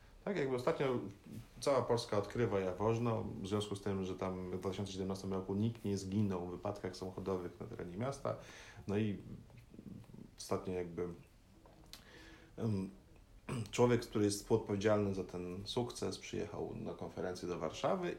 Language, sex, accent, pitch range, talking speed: Polish, male, native, 95-115 Hz, 135 wpm